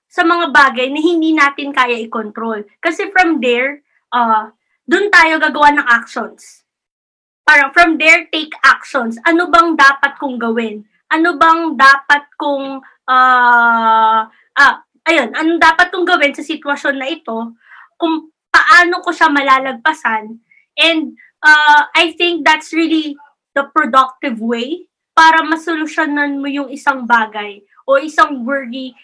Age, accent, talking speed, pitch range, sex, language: 20-39, Filipino, 135 wpm, 255-325 Hz, female, English